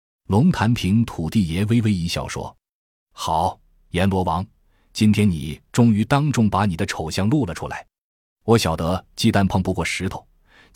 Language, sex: Chinese, male